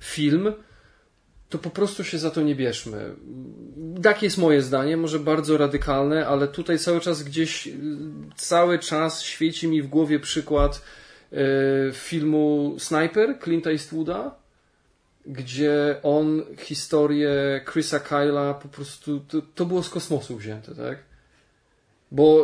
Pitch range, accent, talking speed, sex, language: 145-175 Hz, native, 130 wpm, male, Polish